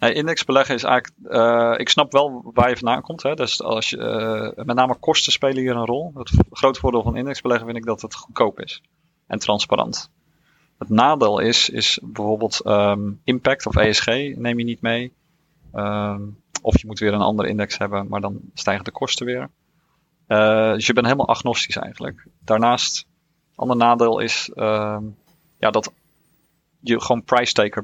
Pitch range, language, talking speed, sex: 110-130 Hz, Dutch, 160 wpm, male